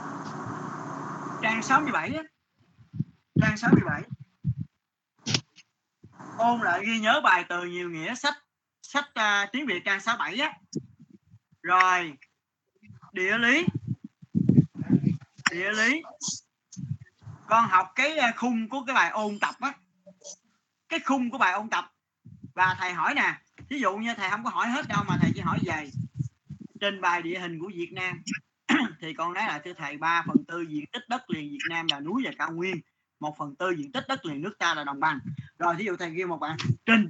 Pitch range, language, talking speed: 165-225 Hz, Vietnamese, 170 wpm